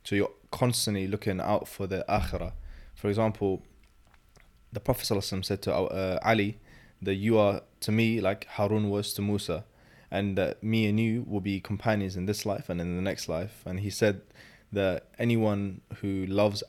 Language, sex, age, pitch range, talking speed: English, male, 20-39, 95-110 Hz, 175 wpm